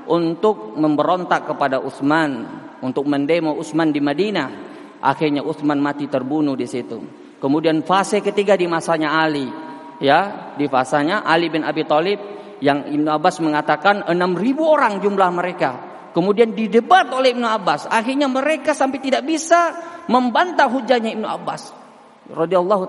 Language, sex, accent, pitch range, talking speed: Indonesian, male, native, 155-255 Hz, 135 wpm